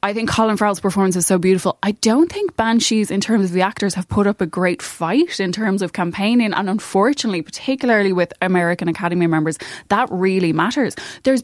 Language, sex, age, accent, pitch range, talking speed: English, female, 10-29, Irish, 170-210 Hz, 200 wpm